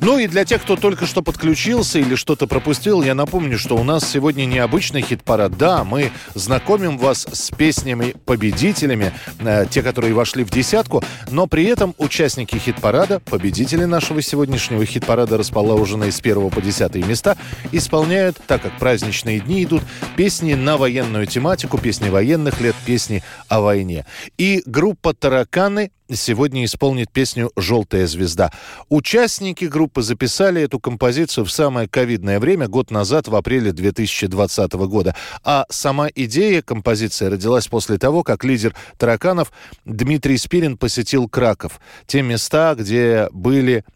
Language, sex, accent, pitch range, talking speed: Russian, male, native, 105-150 Hz, 140 wpm